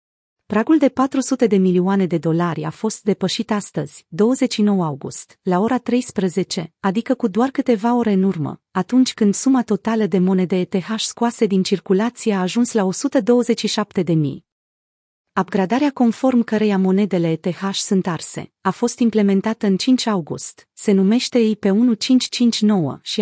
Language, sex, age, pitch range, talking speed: Romanian, female, 30-49, 180-230 Hz, 145 wpm